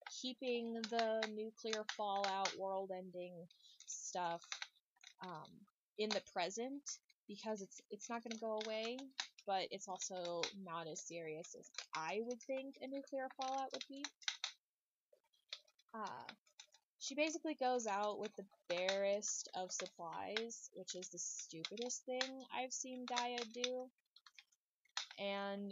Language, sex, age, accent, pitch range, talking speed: English, female, 20-39, American, 190-235 Hz, 125 wpm